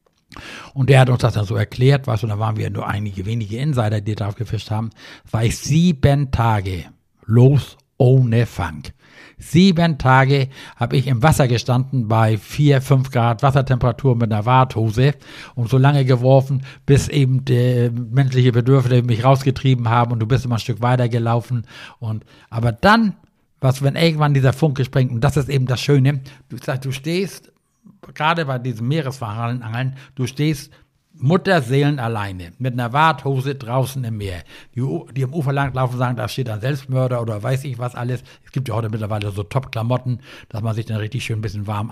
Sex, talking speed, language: male, 180 wpm, German